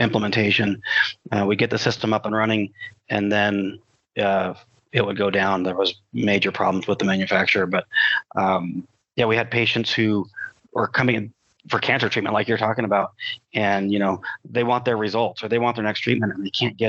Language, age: English, 30-49